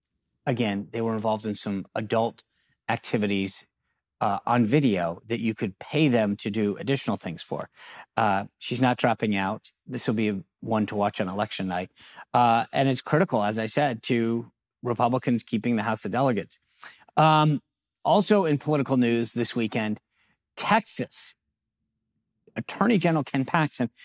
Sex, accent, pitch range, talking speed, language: male, American, 115-150 Hz, 150 wpm, English